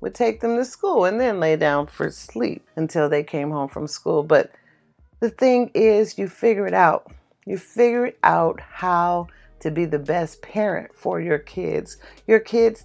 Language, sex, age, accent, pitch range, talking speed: English, female, 40-59, American, 170-235 Hz, 180 wpm